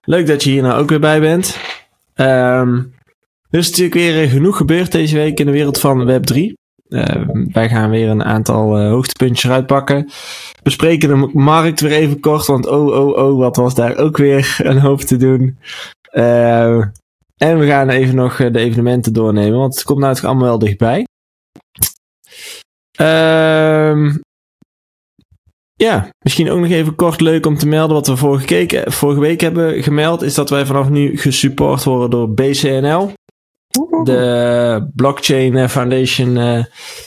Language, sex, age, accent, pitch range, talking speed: Dutch, male, 20-39, Dutch, 120-155 Hz, 155 wpm